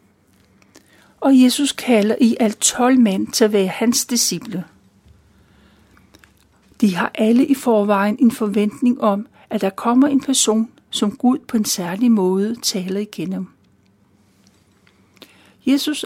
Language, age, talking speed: Danish, 60-79, 125 wpm